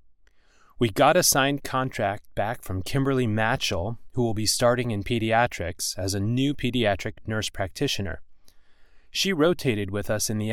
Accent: American